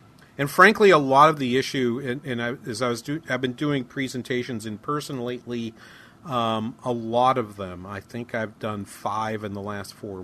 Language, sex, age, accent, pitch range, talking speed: English, male, 40-59, American, 105-130 Hz, 205 wpm